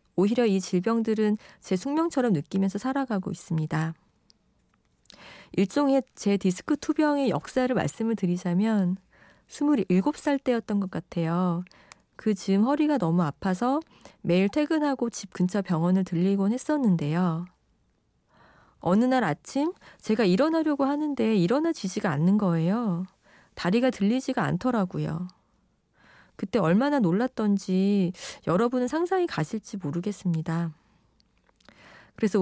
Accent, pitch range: native, 185-255 Hz